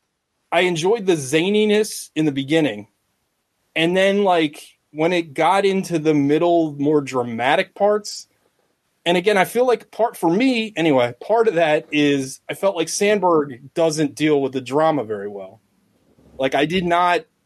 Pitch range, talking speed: 145-195 Hz, 160 wpm